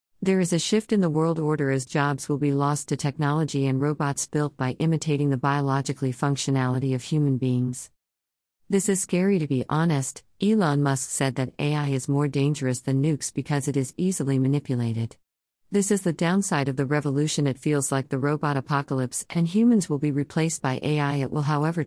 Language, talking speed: English, 190 wpm